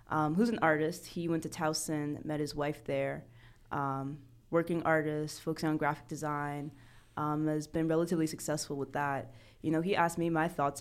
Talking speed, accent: 185 wpm, American